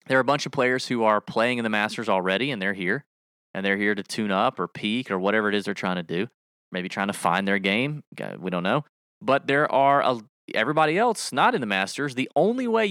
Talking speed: 245 wpm